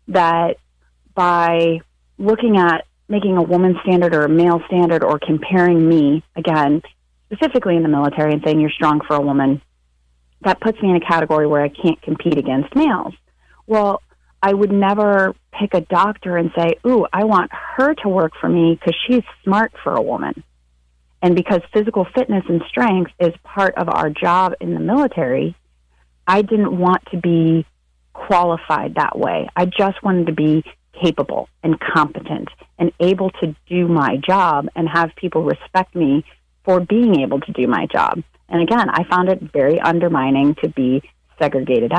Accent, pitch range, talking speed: American, 150-190 Hz, 170 wpm